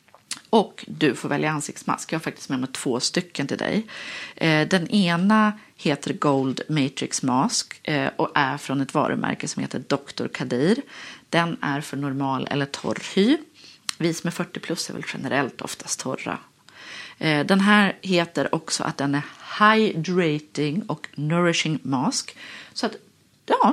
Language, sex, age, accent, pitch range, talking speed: Swedish, female, 40-59, native, 155-225 Hz, 150 wpm